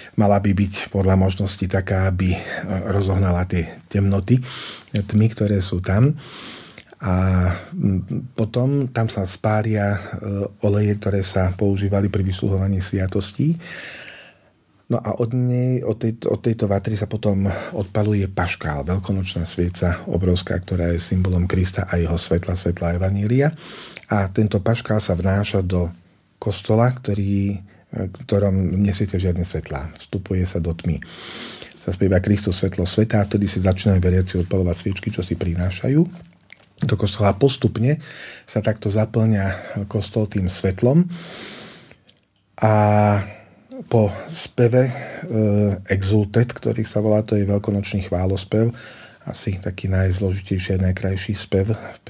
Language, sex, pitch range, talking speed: Slovak, male, 95-110 Hz, 125 wpm